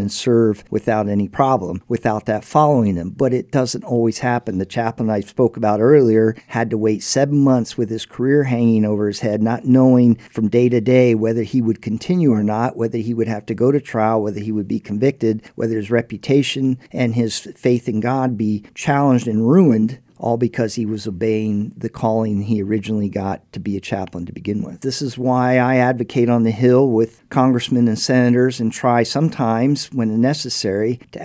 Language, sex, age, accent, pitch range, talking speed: English, male, 50-69, American, 110-125 Hz, 200 wpm